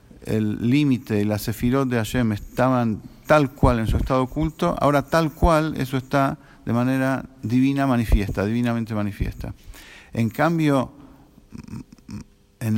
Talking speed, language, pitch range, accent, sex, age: 130 wpm, English, 110-140 Hz, Argentinian, male, 50-69